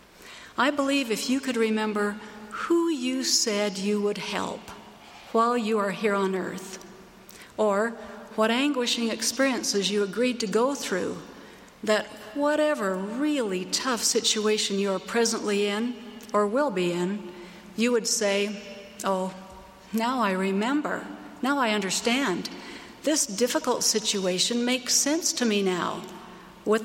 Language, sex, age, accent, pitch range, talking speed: English, female, 60-79, American, 195-240 Hz, 130 wpm